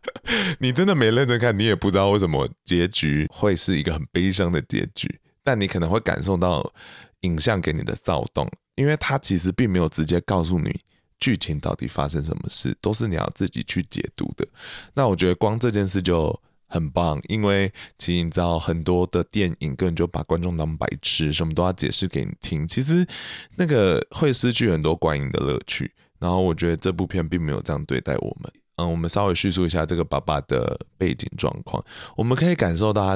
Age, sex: 20-39, male